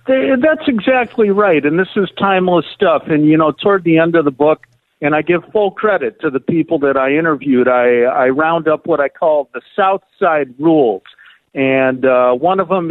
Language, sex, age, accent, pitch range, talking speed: English, male, 50-69, American, 135-190 Hz, 205 wpm